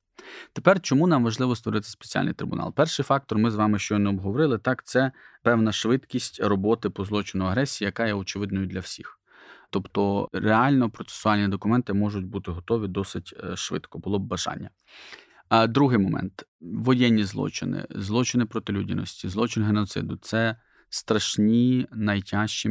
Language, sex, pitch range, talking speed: Ukrainian, male, 100-115 Hz, 135 wpm